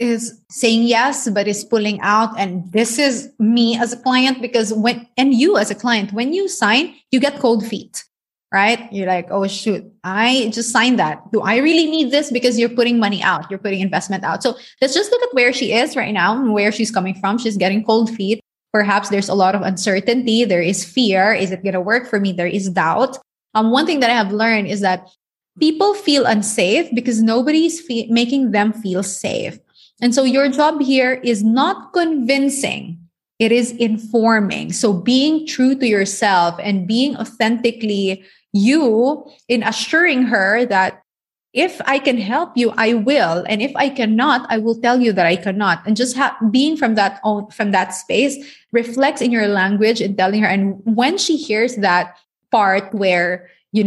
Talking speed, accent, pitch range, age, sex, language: 190 wpm, Filipino, 200-255 Hz, 20-39, female, English